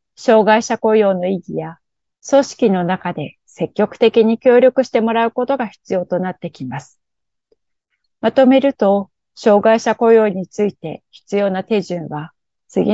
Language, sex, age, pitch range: Japanese, female, 40-59, 180-230 Hz